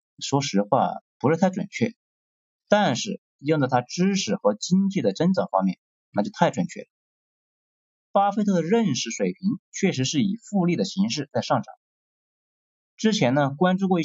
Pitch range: 140-205 Hz